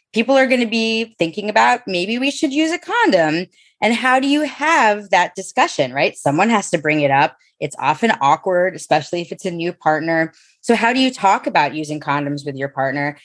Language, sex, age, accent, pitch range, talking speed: English, female, 20-39, American, 160-225 Hz, 215 wpm